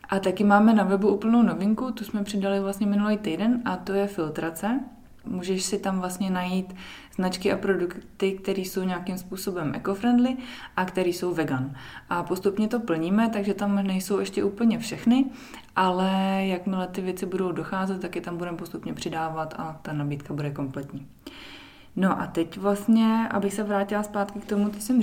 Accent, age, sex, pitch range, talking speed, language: native, 20-39, female, 170-200 Hz, 175 wpm, Czech